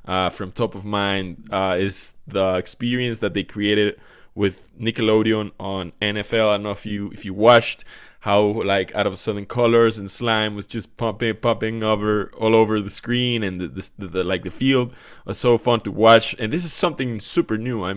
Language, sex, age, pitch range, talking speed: English, male, 20-39, 100-115 Hz, 205 wpm